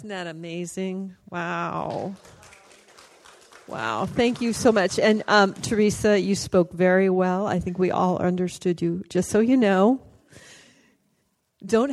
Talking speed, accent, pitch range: 135 wpm, American, 185-215 Hz